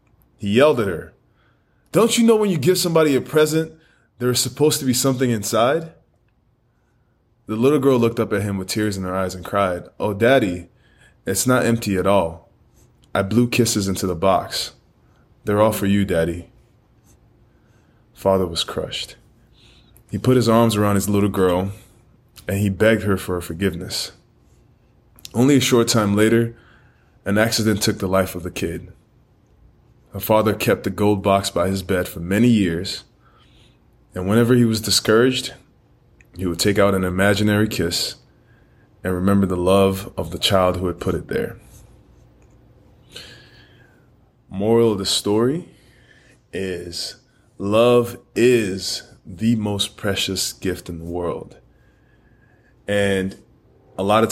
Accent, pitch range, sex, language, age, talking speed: American, 95-120 Hz, male, English, 20-39, 150 wpm